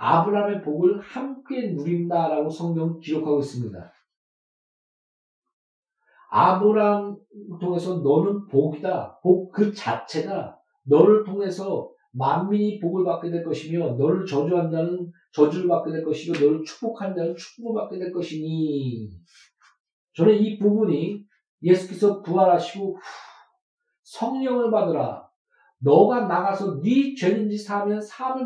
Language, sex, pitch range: Korean, male, 165-220 Hz